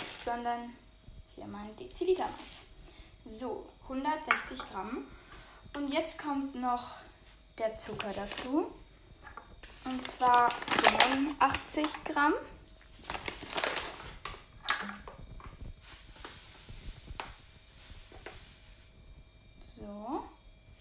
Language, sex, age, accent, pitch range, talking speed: German, female, 10-29, German, 235-295 Hz, 55 wpm